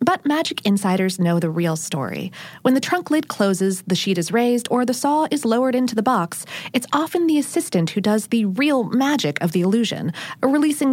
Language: English